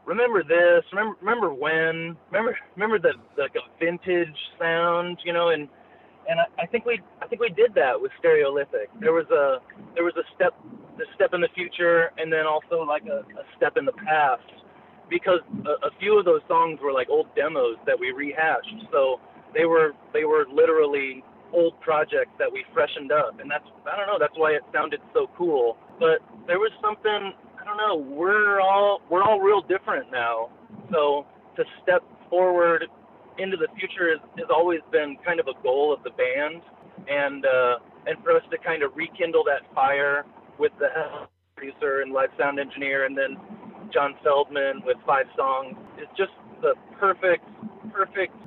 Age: 30-49